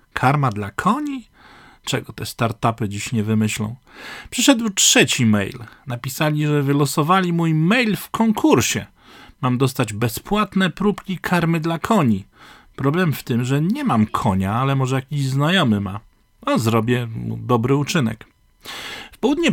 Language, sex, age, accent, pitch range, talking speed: Polish, male, 40-59, native, 120-170 Hz, 135 wpm